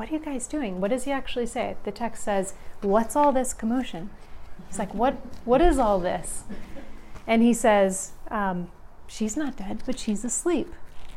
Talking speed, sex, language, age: 185 wpm, female, English, 30-49